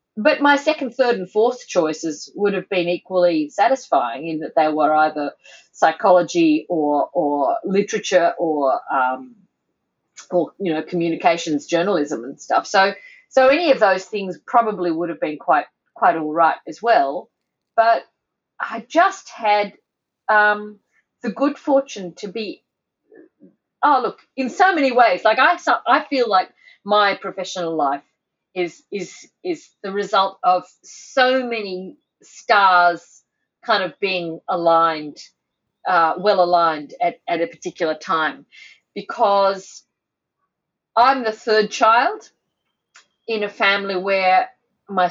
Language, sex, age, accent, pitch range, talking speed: English, female, 40-59, Australian, 170-230 Hz, 135 wpm